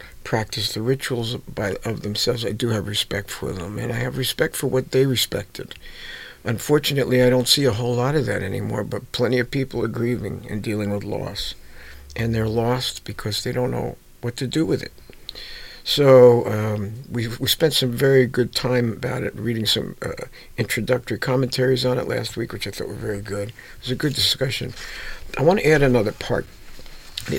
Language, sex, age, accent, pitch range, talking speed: English, male, 50-69, American, 110-130 Hz, 195 wpm